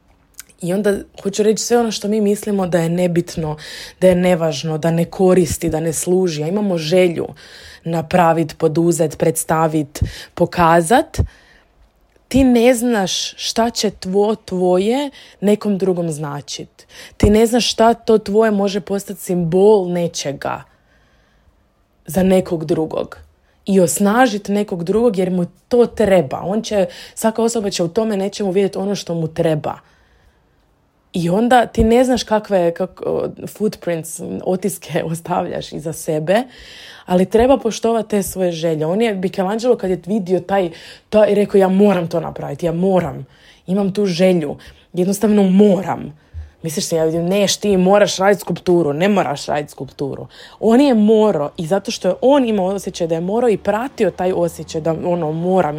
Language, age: Croatian, 20-39